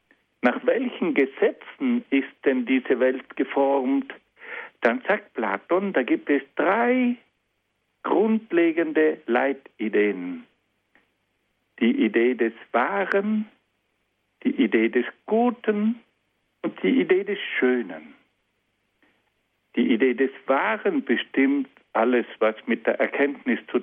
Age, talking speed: 60-79, 105 wpm